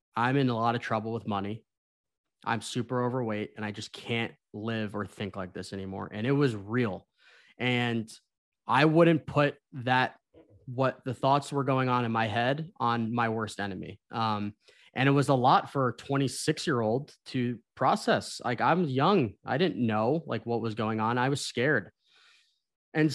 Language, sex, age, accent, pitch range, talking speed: English, male, 20-39, American, 115-135 Hz, 185 wpm